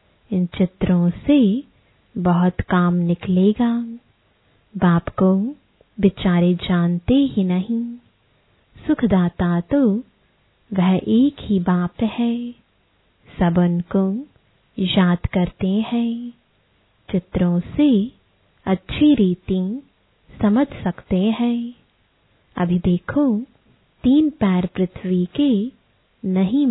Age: 20-39